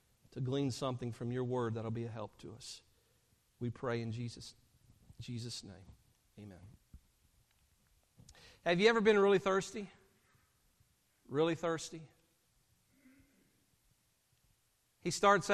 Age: 50-69